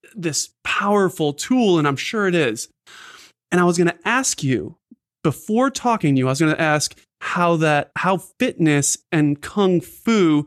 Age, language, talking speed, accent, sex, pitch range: 20-39, English, 180 wpm, American, male, 145-190 Hz